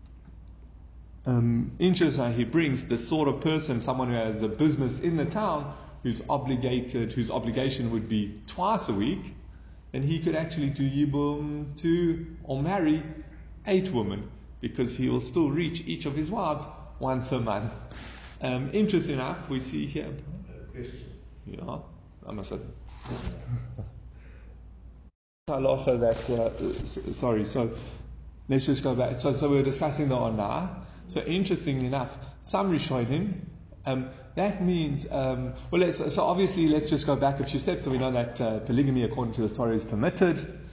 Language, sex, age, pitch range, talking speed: English, male, 30-49, 115-150 Hz, 160 wpm